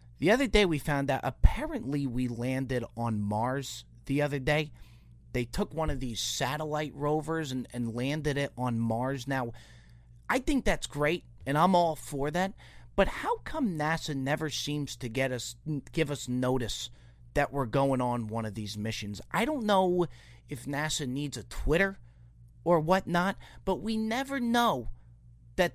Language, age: English, 30-49